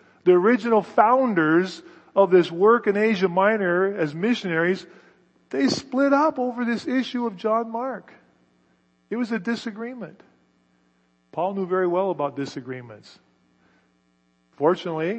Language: English